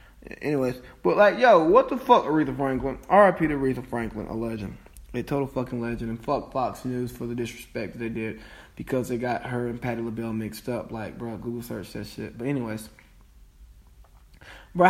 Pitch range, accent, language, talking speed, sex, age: 115-165 Hz, American, English, 185 wpm, male, 20-39